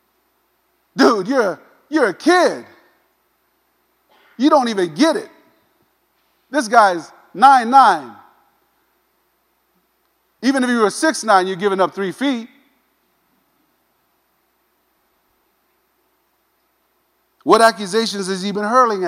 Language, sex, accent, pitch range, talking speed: English, male, American, 200-310 Hz, 100 wpm